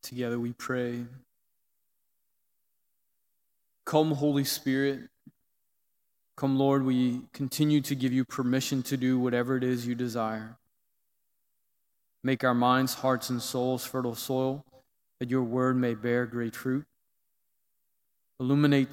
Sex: male